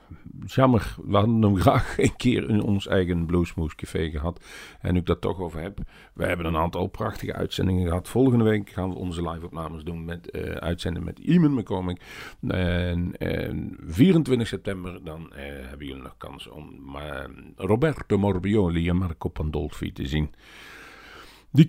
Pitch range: 85-115 Hz